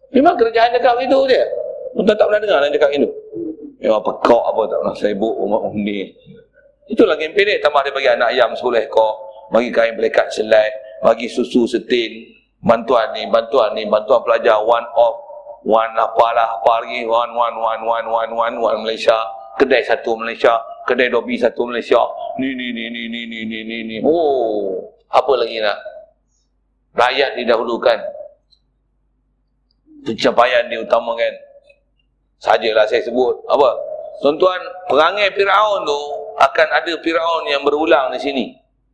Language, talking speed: Malay, 150 wpm